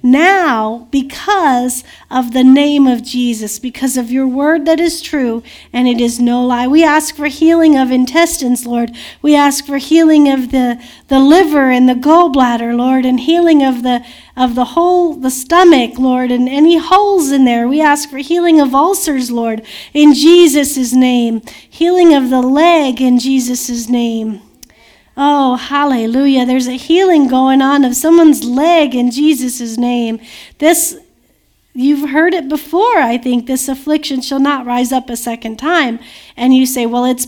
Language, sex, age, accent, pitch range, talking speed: English, female, 50-69, American, 245-305 Hz, 165 wpm